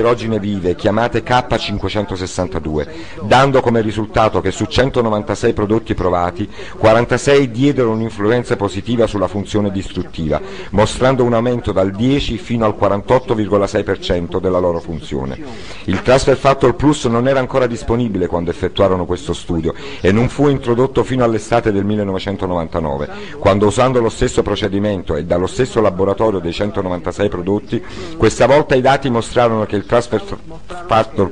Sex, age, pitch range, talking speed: male, 50-69, 95-120 Hz, 140 wpm